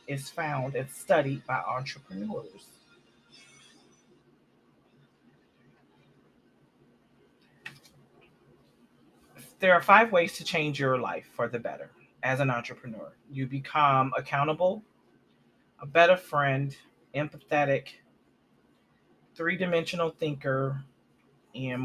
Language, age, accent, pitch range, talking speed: English, 30-49, American, 130-160 Hz, 80 wpm